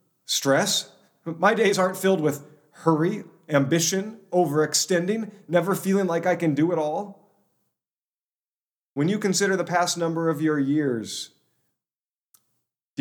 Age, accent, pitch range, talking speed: 40-59, American, 135-175 Hz, 125 wpm